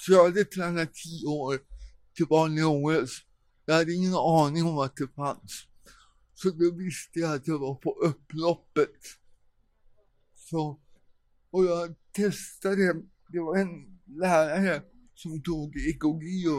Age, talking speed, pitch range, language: 60-79, 130 wpm, 140-175 Hz, Swedish